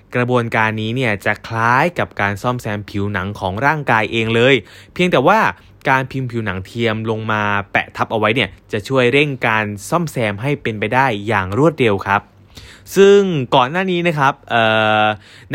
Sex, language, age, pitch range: male, Thai, 20-39, 105-130 Hz